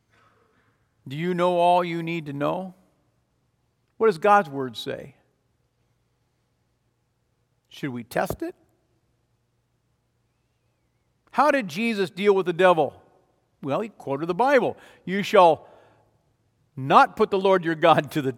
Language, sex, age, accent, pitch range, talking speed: English, male, 50-69, American, 130-195 Hz, 125 wpm